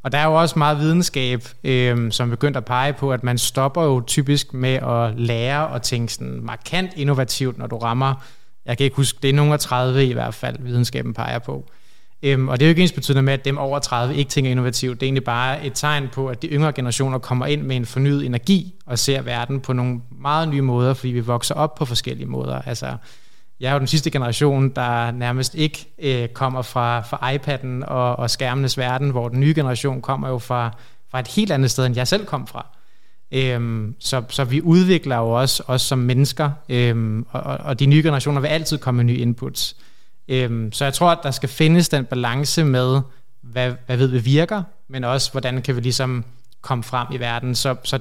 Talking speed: 220 wpm